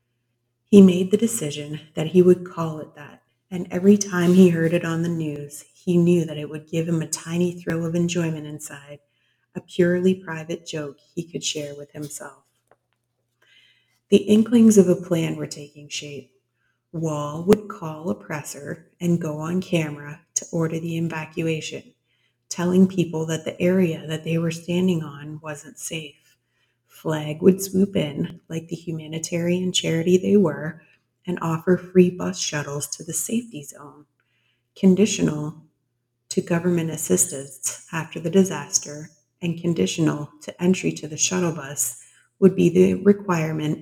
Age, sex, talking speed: 30-49, female, 155 wpm